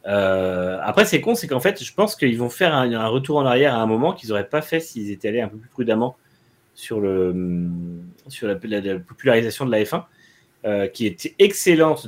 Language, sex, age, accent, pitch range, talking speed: French, male, 30-49, French, 100-140 Hz, 225 wpm